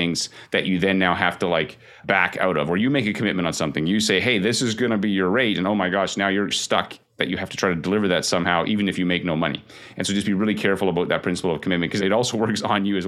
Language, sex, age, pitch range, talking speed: English, male, 30-49, 90-110 Hz, 310 wpm